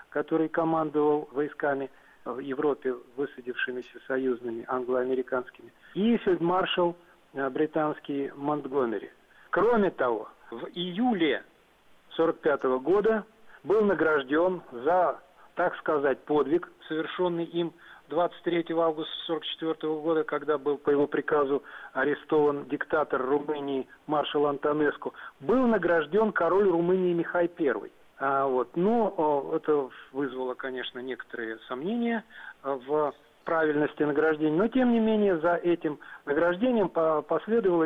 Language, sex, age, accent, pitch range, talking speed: Russian, male, 40-59, native, 145-180 Hz, 105 wpm